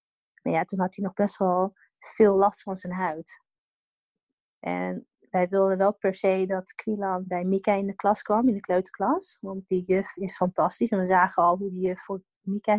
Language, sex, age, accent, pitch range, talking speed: Dutch, female, 20-39, Dutch, 185-220 Hz, 205 wpm